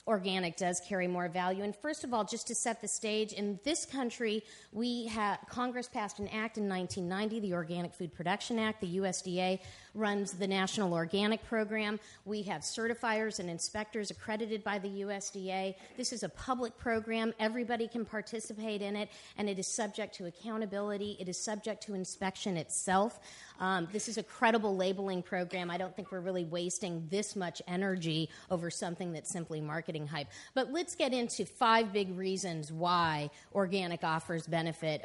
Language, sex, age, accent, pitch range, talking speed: English, female, 40-59, American, 185-235 Hz, 175 wpm